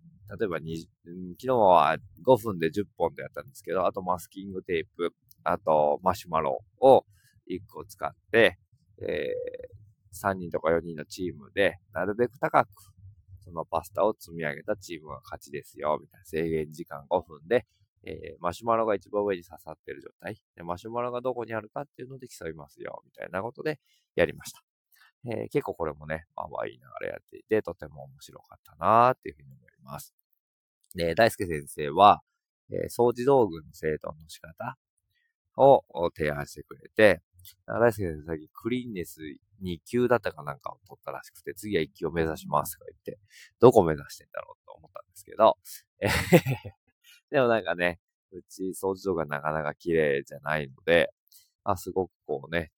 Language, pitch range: Japanese, 80-115 Hz